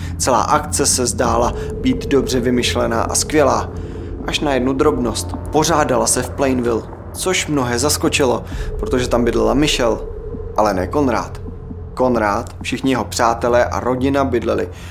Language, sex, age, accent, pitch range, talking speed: Czech, male, 20-39, native, 105-145 Hz, 135 wpm